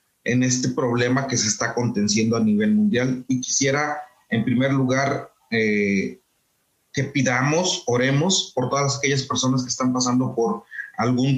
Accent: Mexican